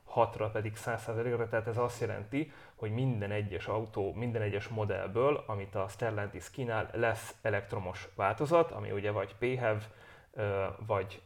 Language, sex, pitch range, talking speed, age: English, male, 105-120 Hz, 140 wpm, 30-49